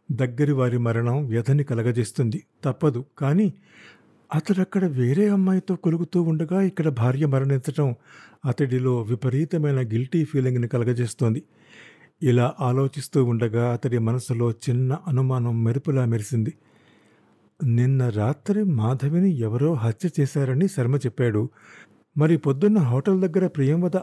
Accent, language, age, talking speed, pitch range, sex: native, Telugu, 50-69, 105 wpm, 120-150 Hz, male